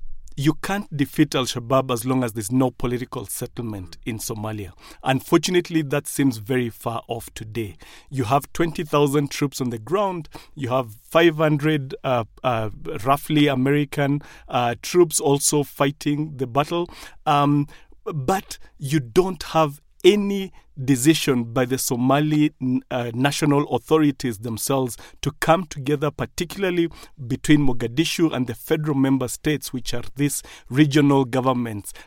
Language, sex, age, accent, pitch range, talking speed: English, male, 40-59, South African, 130-155 Hz, 130 wpm